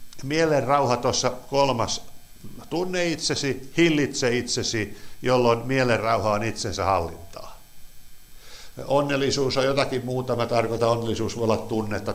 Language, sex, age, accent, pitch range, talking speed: Finnish, male, 60-79, native, 100-125 Hz, 115 wpm